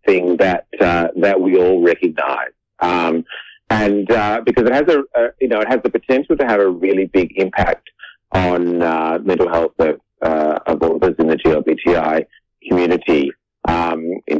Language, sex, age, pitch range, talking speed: English, male, 30-49, 90-125 Hz, 180 wpm